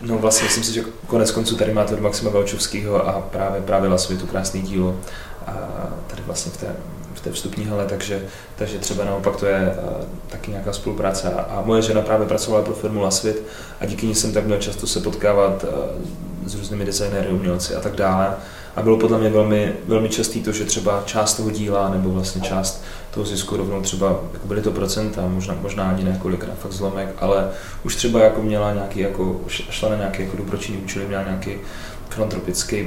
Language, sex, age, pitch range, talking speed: English, male, 20-39, 95-110 Hz, 190 wpm